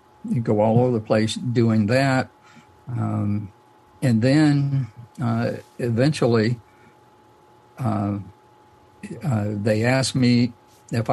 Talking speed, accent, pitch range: 100 wpm, American, 115-130 Hz